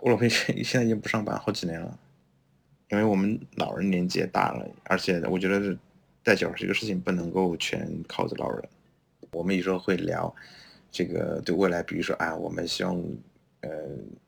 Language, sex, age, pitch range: Chinese, male, 20-39, 85-100 Hz